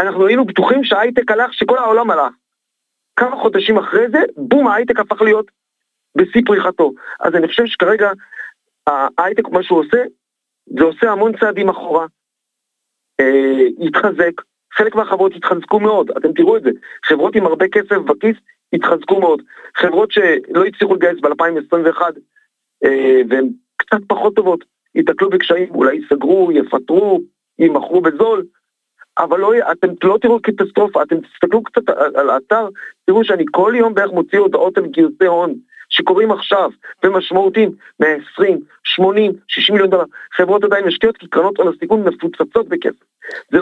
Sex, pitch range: male, 180-275 Hz